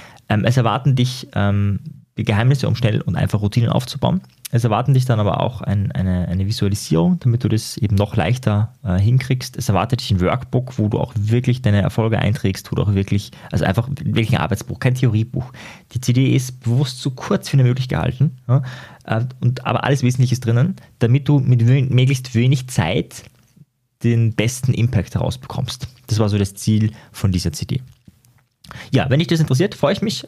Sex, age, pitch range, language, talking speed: male, 20-39, 115-140 Hz, German, 190 wpm